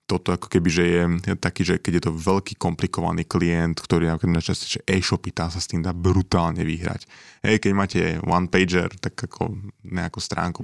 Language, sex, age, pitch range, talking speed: Slovak, male, 20-39, 85-100 Hz, 190 wpm